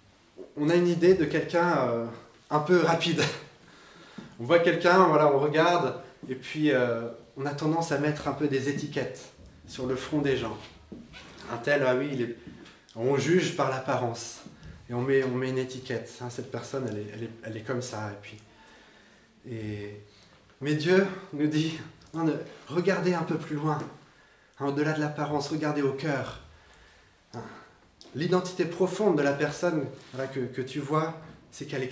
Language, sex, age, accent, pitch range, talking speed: French, male, 20-39, French, 120-155 Hz, 150 wpm